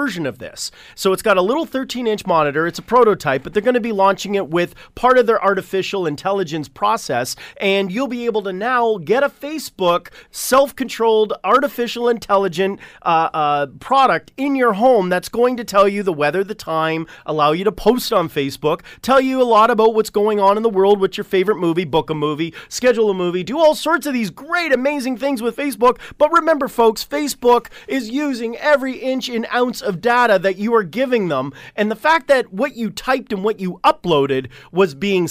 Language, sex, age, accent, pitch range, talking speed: English, male, 30-49, American, 180-255 Hz, 205 wpm